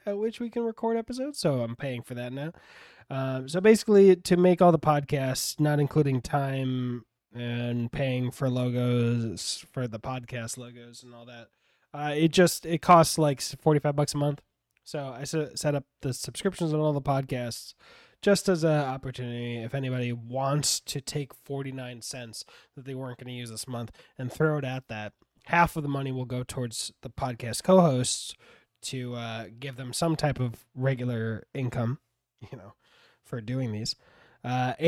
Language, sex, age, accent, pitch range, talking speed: English, male, 20-39, American, 120-155 Hz, 175 wpm